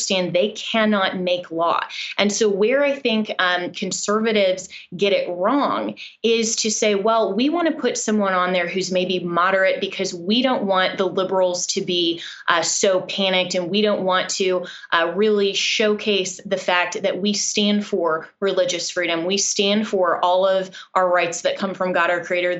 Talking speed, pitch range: 180 wpm, 180-215 Hz